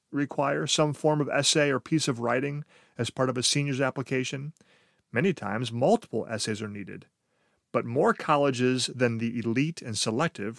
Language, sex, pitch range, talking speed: English, male, 110-145 Hz, 165 wpm